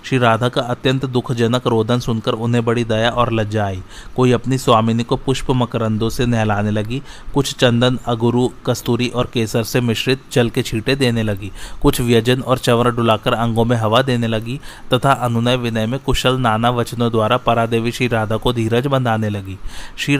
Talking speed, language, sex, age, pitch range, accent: 180 wpm, Hindi, male, 30-49, 115-125 Hz, native